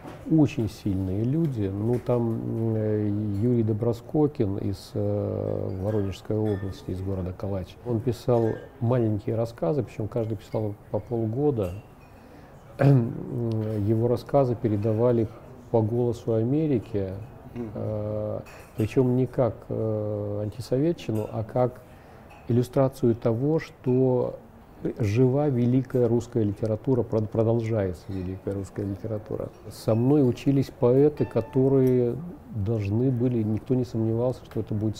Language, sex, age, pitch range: Russian, male, 50-69, 105-125 Hz